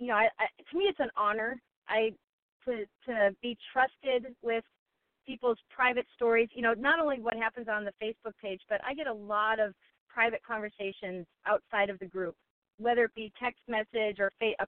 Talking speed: 195 wpm